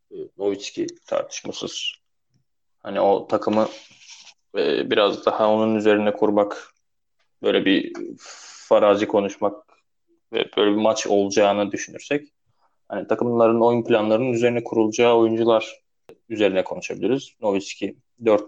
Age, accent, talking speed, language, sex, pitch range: 20-39, native, 100 wpm, Turkish, male, 105-160 Hz